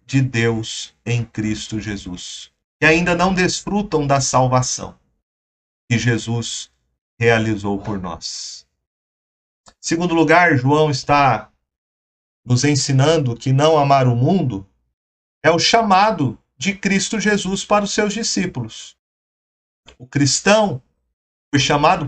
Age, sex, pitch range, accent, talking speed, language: 40-59, male, 110-160 Hz, Brazilian, 115 wpm, Portuguese